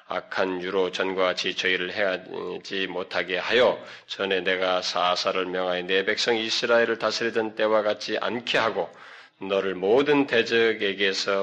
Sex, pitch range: male, 90-110 Hz